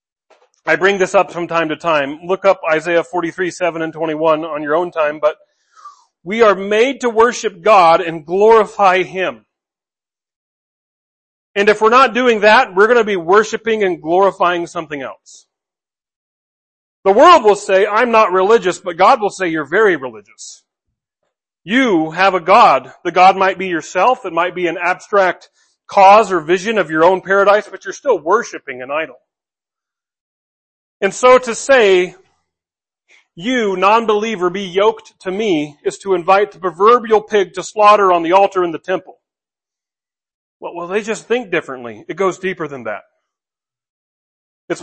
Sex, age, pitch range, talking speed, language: male, 40-59, 175-220 Hz, 160 wpm, English